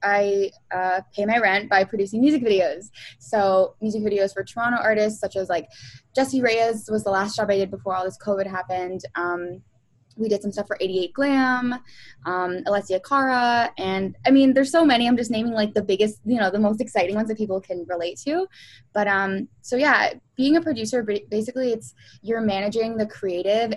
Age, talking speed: 10-29, 195 wpm